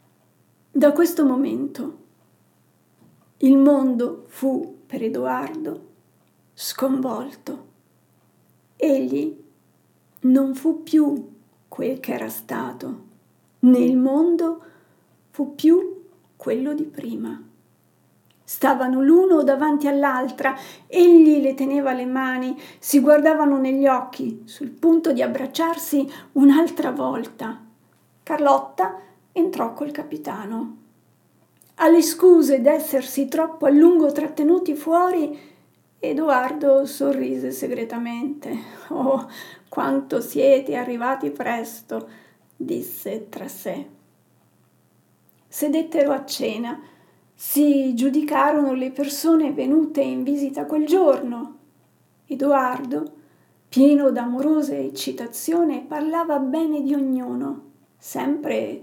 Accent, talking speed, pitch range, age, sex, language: native, 90 wpm, 255-310 Hz, 50-69, female, Italian